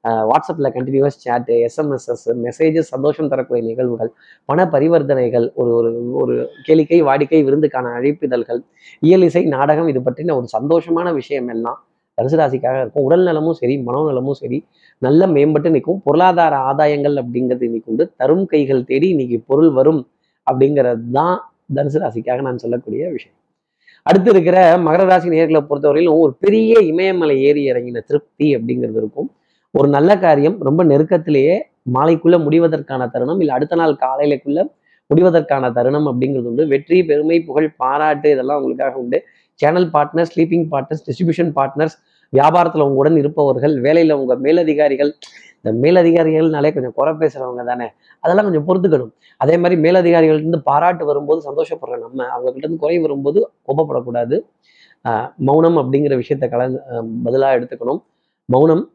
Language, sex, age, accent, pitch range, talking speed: Tamil, male, 30-49, native, 130-165 Hz, 130 wpm